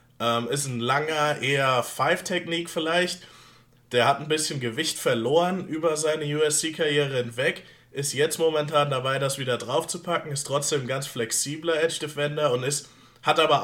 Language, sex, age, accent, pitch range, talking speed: German, male, 20-39, German, 120-150 Hz, 145 wpm